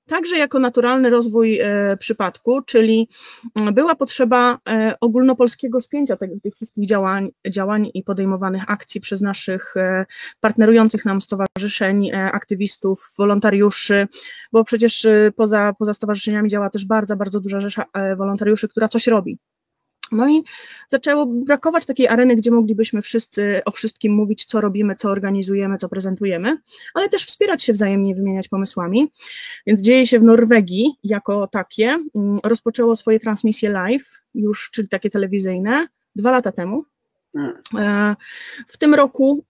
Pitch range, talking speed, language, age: 200-245 Hz, 140 wpm, Polish, 20-39